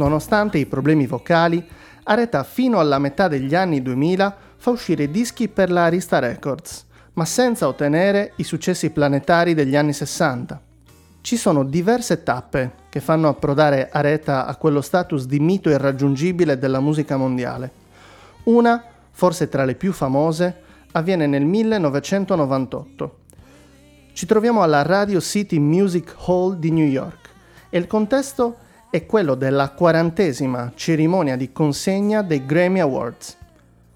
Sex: male